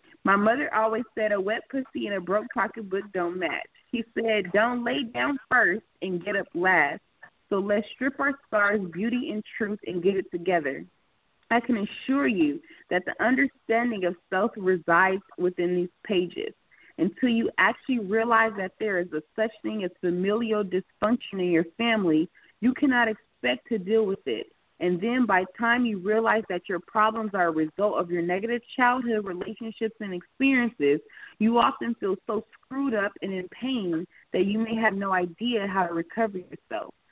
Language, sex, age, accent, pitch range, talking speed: English, female, 30-49, American, 185-230 Hz, 180 wpm